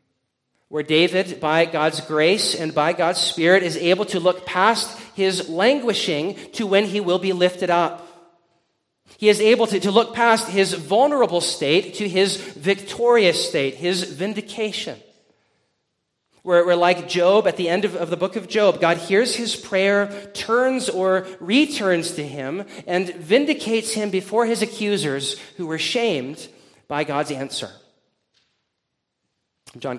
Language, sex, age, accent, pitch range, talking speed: English, male, 40-59, American, 165-210 Hz, 150 wpm